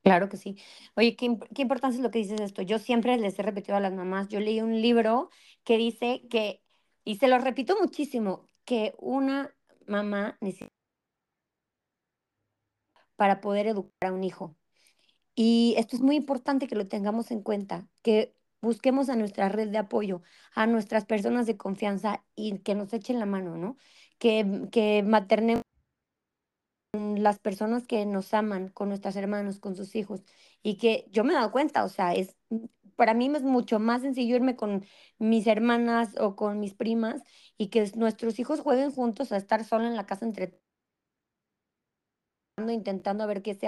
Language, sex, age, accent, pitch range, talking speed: Spanish, female, 30-49, Mexican, 205-240 Hz, 175 wpm